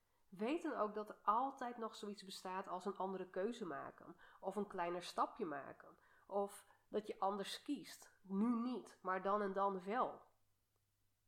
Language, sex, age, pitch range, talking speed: Dutch, female, 30-49, 180-235 Hz, 165 wpm